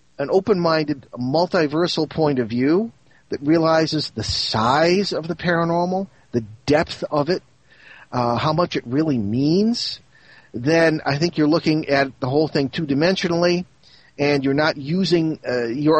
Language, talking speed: English, 145 wpm